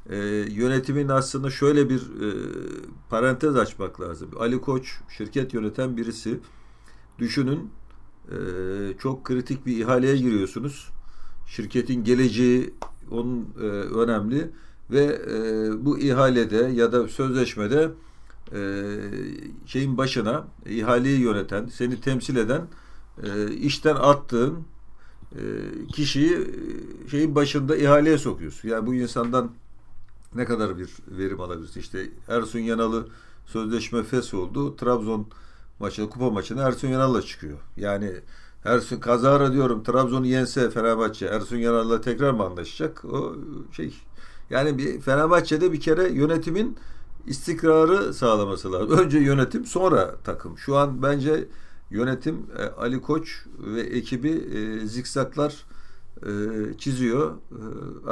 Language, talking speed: Turkish, 115 wpm